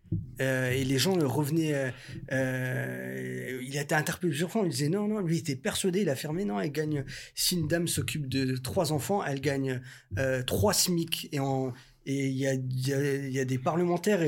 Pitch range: 130-170 Hz